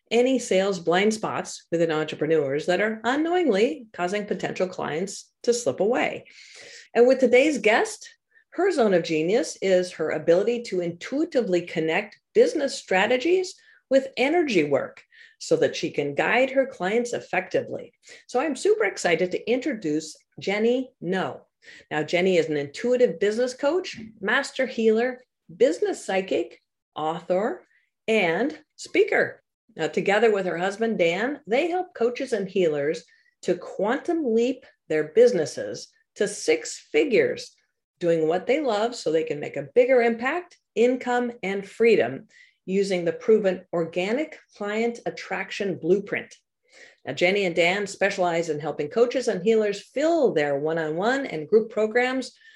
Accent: American